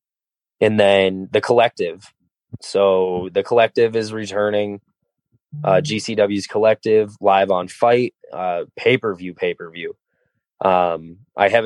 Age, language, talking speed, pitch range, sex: 20-39, English, 105 wpm, 95-115 Hz, male